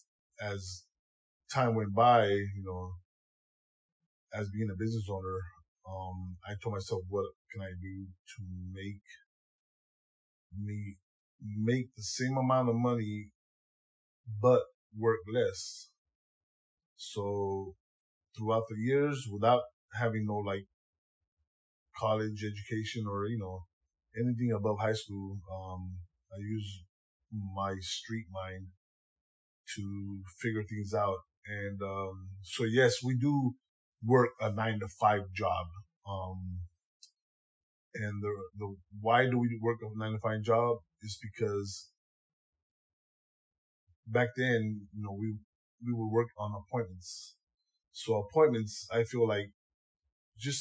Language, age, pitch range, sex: English, 20-39, 90-115 Hz, male